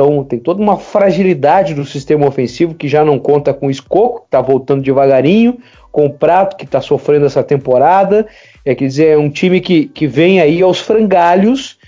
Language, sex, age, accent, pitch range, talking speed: Portuguese, male, 40-59, Brazilian, 135-190 Hz, 185 wpm